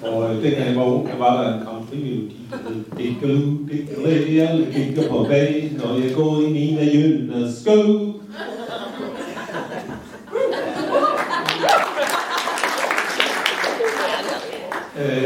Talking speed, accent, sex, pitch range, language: 110 wpm, native, male, 125-175 Hz, Danish